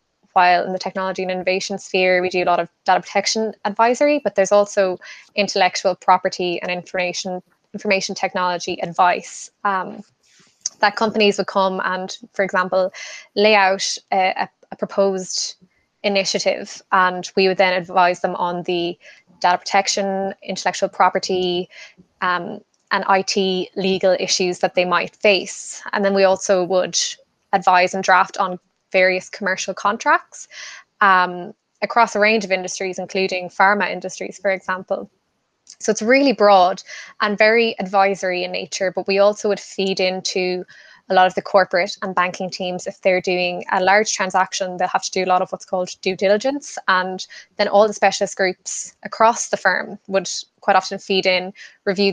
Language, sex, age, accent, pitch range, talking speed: English, female, 20-39, Irish, 185-200 Hz, 160 wpm